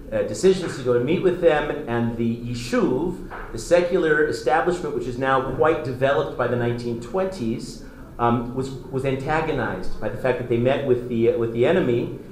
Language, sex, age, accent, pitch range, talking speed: English, male, 40-59, American, 120-150 Hz, 190 wpm